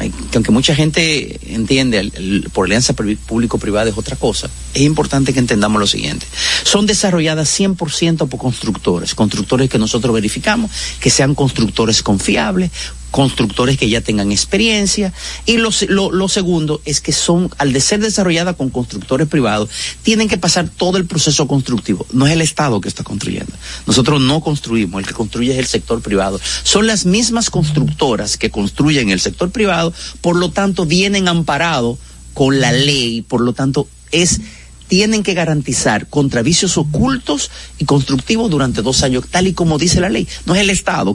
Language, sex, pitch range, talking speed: Spanish, male, 120-180 Hz, 170 wpm